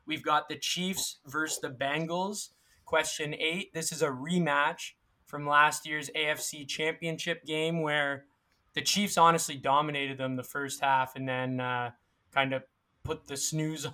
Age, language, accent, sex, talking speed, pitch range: 20-39, English, American, male, 155 wpm, 135-155 Hz